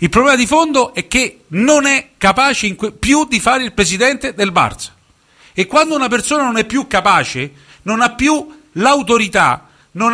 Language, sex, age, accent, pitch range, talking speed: Italian, male, 50-69, native, 175-260 Hz, 180 wpm